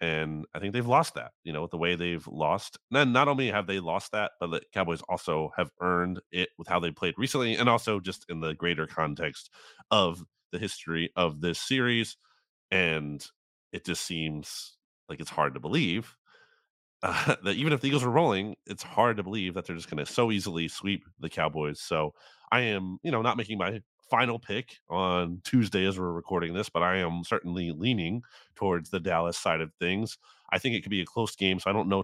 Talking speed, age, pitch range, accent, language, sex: 215 wpm, 30-49, 85-110 Hz, American, English, male